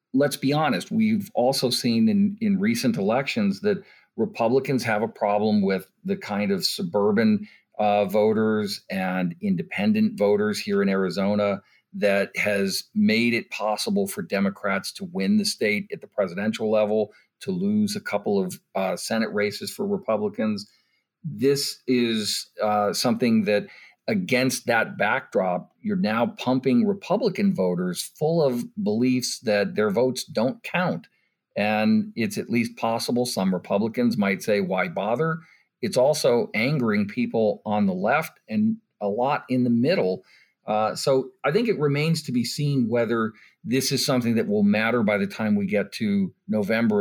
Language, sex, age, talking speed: English, male, 50-69, 155 wpm